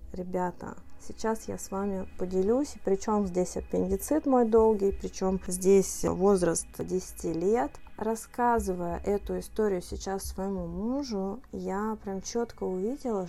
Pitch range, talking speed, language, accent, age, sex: 185-225 Hz, 115 wpm, Russian, native, 20-39, female